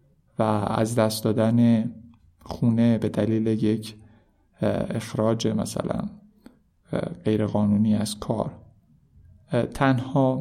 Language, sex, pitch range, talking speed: Persian, male, 110-150 Hz, 80 wpm